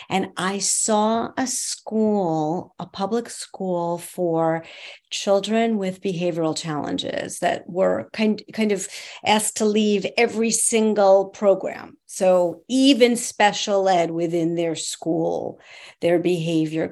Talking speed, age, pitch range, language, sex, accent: 115 wpm, 50-69, 180-225 Hz, English, female, American